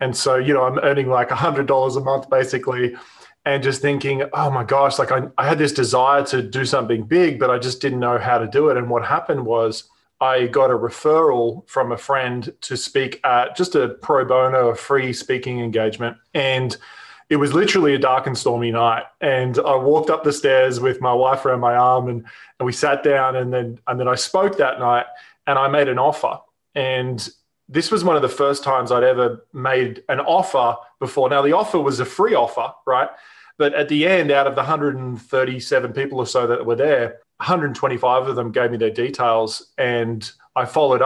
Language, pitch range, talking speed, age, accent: English, 125-140 Hz, 210 wpm, 20-39, Australian